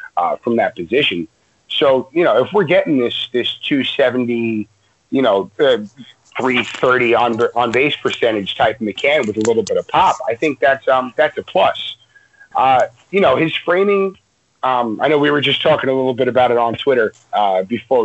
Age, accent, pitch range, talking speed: 30-49, American, 115-180 Hz, 200 wpm